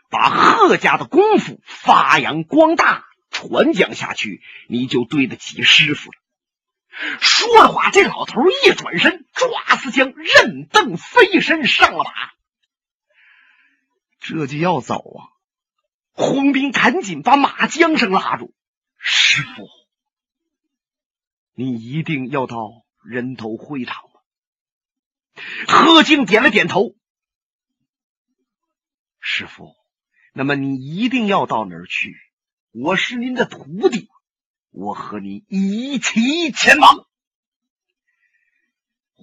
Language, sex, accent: Chinese, male, native